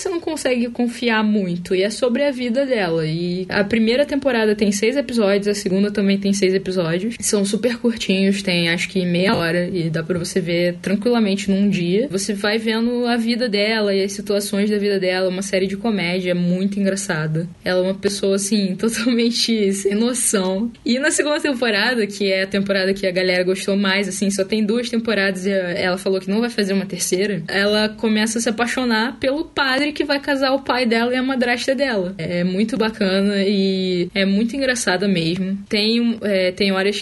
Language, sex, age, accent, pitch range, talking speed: Portuguese, female, 10-29, Brazilian, 185-225 Hz, 200 wpm